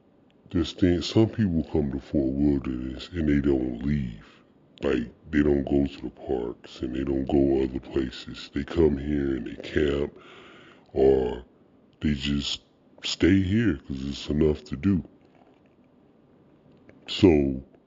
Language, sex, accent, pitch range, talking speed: English, female, American, 65-75 Hz, 140 wpm